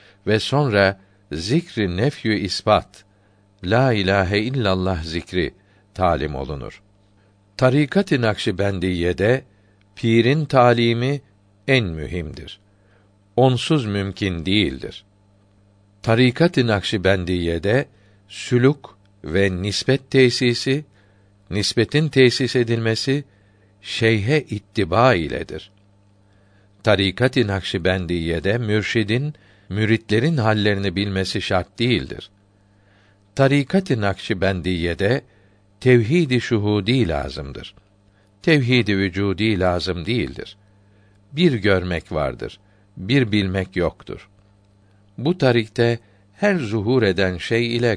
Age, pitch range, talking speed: 60-79, 100-120 Hz, 80 wpm